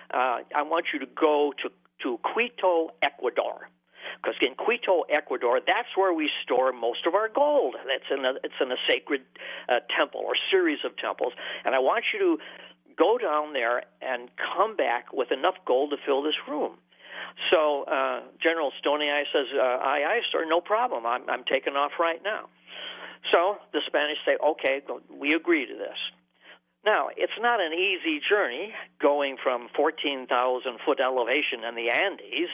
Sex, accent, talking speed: male, American, 170 wpm